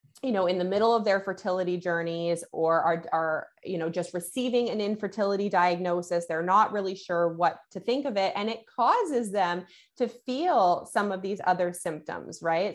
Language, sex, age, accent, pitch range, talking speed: English, female, 20-39, American, 175-205 Hz, 190 wpm